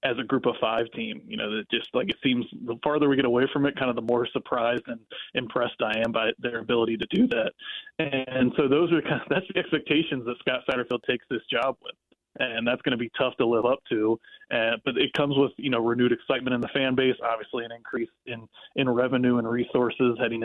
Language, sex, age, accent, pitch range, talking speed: English, male, 20-39, American, 115-135 Hz, 245 wpm